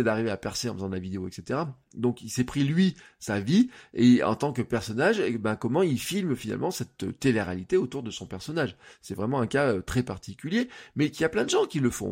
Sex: male